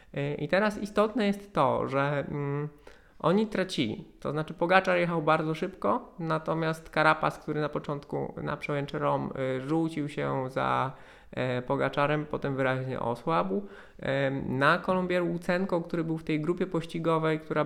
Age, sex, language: 20-39, male, Polish